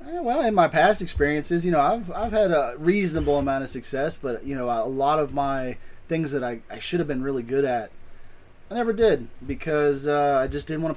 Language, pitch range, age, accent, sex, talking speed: English, 115-145 Hz, 20-39, American, male, 230 wpm